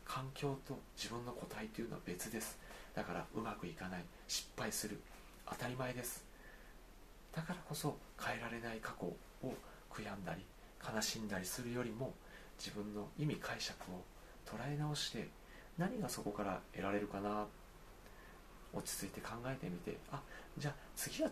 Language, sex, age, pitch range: Japanese, male, 40-59, 100-130 Hz